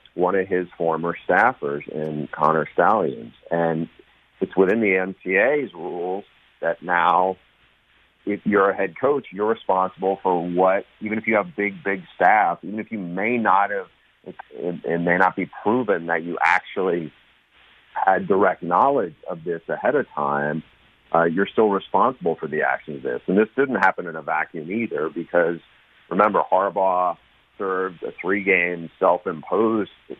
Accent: American